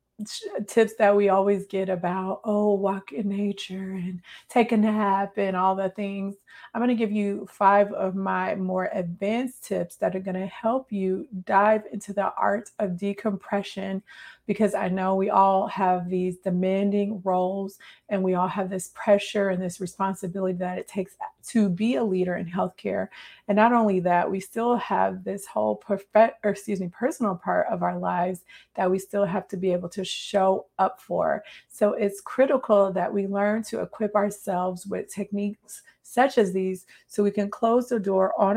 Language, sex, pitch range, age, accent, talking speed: English, female, 185-205 Hz, 30-49, American, 185 wpm